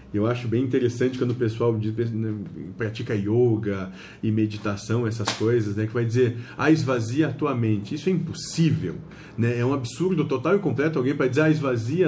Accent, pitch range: Brazilian, 125-175 Hz